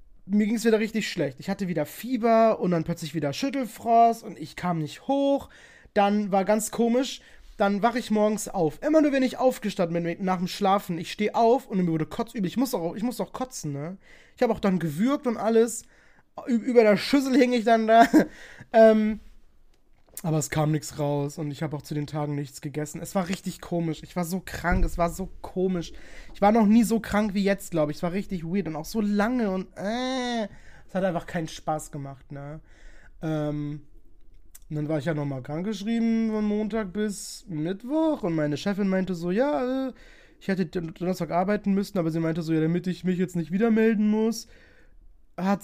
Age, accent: 20-39, German